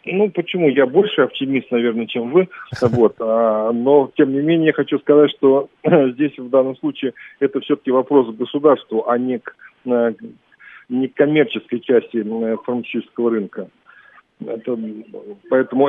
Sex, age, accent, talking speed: male, 40-59, native, 140 wpm